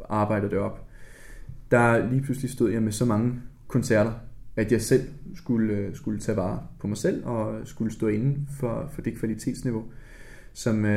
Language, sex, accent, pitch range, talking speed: Danish, male, native, 110-135 Hz, 170 wpm